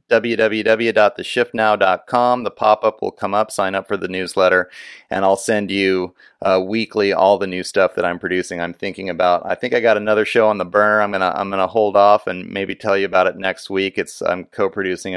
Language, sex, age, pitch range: English, male, 30-49, 90-105 Hz